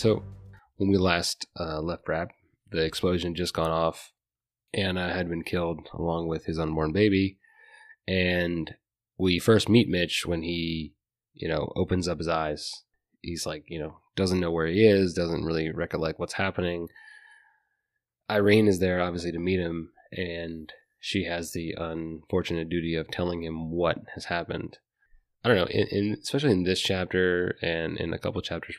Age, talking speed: 20-39, 170 wpm